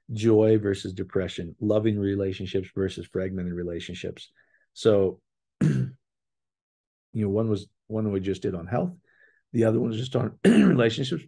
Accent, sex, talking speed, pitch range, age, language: American, male, 140 wpm, 95-120 Hz, 50-69, English